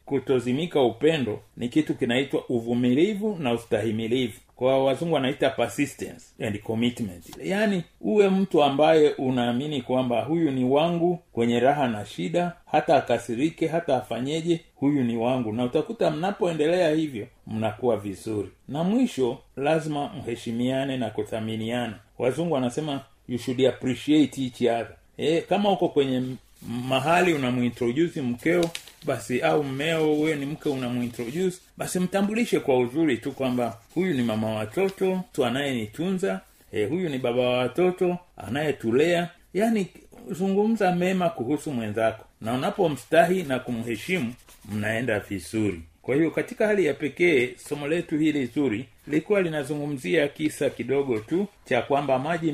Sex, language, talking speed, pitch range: male, Swahili, 130 wpm, 120-165 Hz